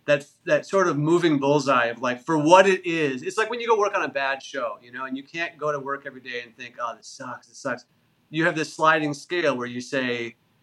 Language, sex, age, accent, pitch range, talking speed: English, male, 30-49, American, 135-170 Hz, 265 wpm